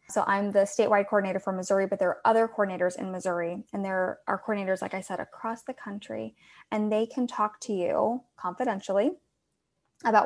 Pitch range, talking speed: 205-250 Hz, 185 wpm